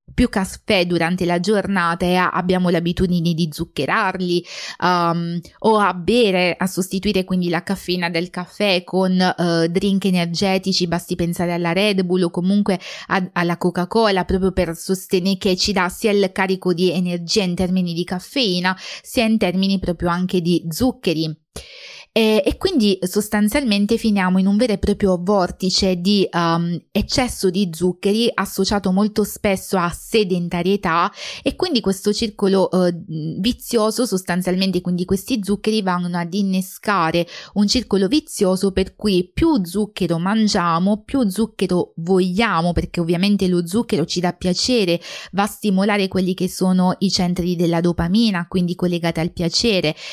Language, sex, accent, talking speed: Italian, female, native, 140 wpm